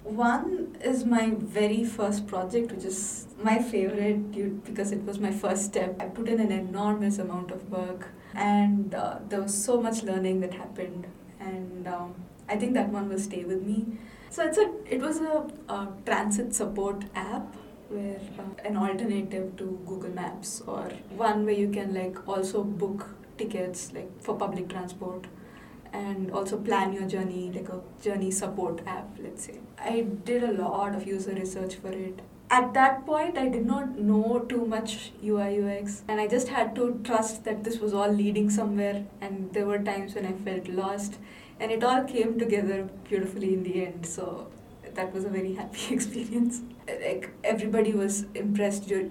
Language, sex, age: English, female, 20-39